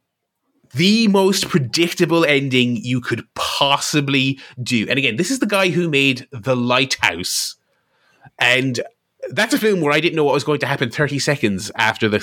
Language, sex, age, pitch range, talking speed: English, male, 20-39, 110-150 Hz, 170 wpm